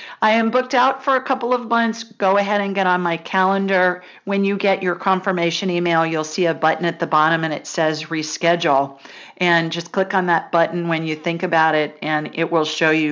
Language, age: English, 40-59